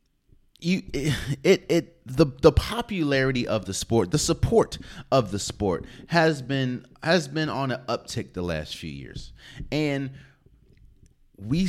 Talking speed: 140 wpm